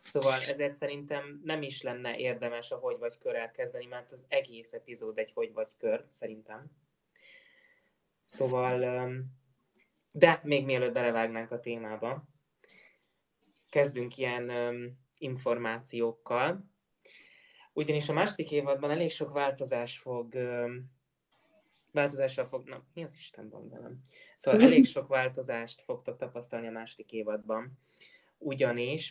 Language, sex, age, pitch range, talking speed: Hungarian, male, 20-39, 120-155 Hz, 120 wpm